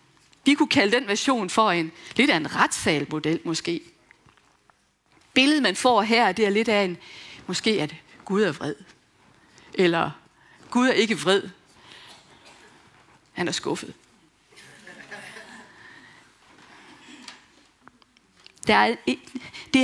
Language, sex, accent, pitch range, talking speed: Danish, female, native, 190-255 Hz, 105 wpm